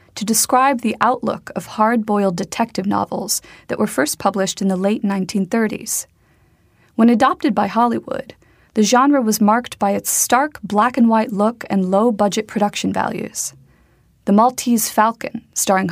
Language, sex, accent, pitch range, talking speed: English, female, American, 195-245 Hz, 140 wpm